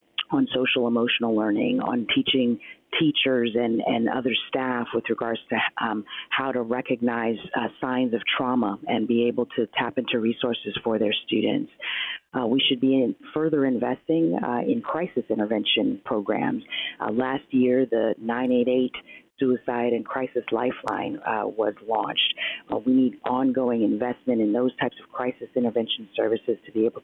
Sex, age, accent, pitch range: female, 40-59, American, 115-130 Hz